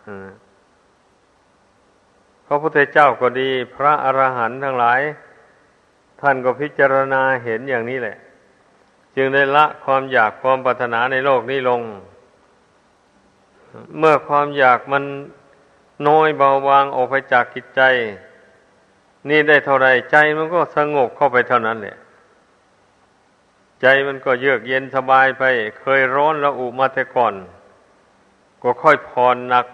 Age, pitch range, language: 60-79, 125-140 Hz, Thai